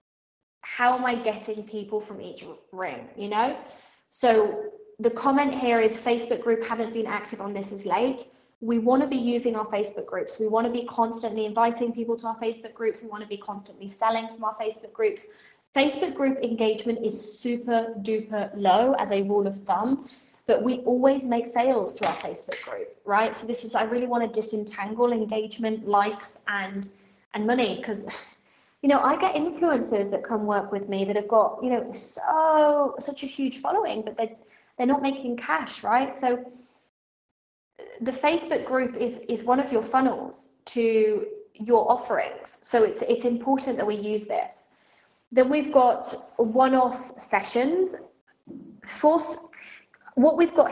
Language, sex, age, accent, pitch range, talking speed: English, female, 20-39, British, 215-260 Hz, 175 wpm